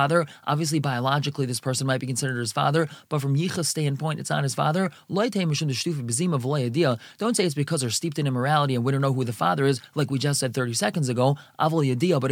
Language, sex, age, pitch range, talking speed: English, male, 30-49, 135-170 Hz, 200 wpm